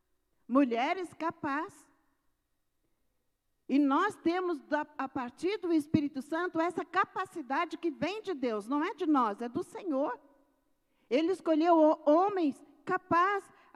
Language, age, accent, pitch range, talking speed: Portuguese, 50-69, Brazilian, 255-335 Hz, 120 wpm